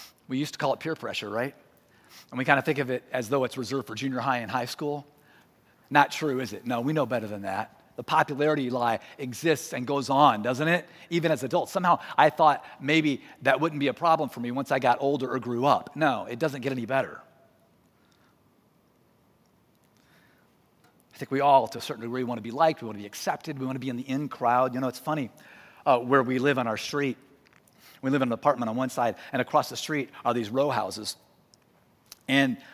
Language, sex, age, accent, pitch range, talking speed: English, male, 40-59, American, 125-160 Hz, 225 wpm